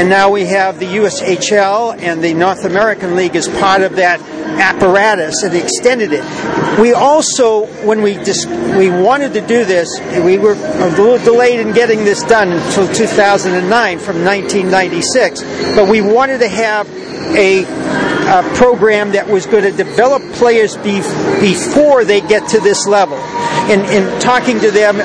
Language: English